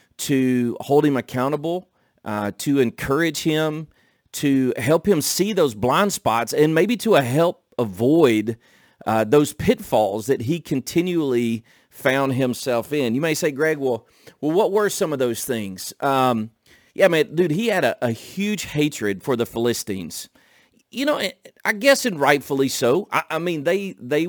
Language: English